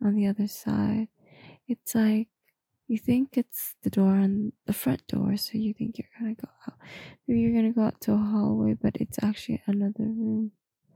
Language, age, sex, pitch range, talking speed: English, 20-39, female, 205-225 Hz, 190 wpm